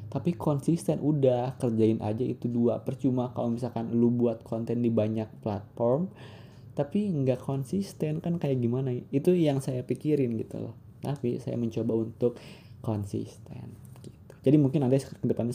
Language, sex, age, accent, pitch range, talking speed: Indonesian, male, 20-39, native, 110-130 Hz, 145 wpm